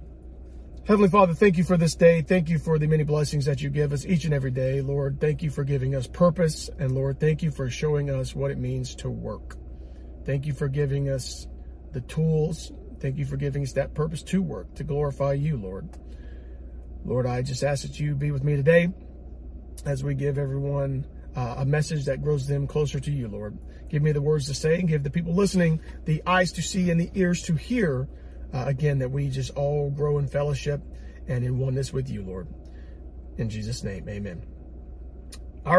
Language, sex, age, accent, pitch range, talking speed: English, male, 40-59, American, 115-155 Hz, 210 wpm